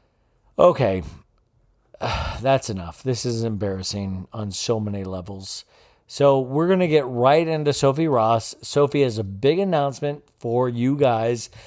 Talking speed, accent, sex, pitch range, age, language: 145 wpm, American, male, 105-140 Hz, 40-59, English